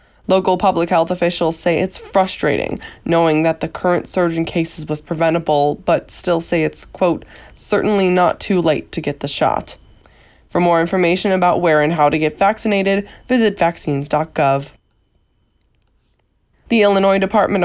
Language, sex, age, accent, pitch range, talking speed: English, female, 20-39, American, 160-190 Hz, 150 wpm